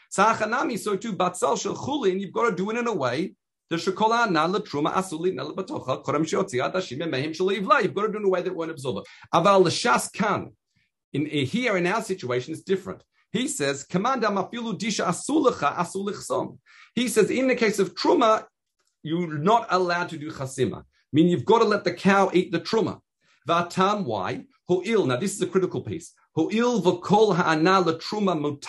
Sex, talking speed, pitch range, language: male, 130 wpm, 160-210 Hz, English